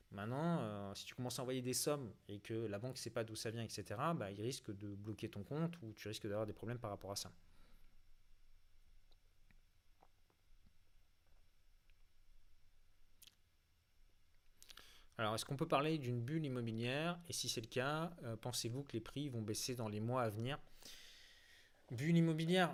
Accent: French